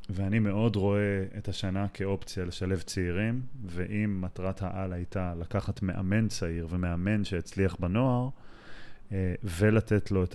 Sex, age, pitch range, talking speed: male, 20-39, 90-105 Hz, 120 wpm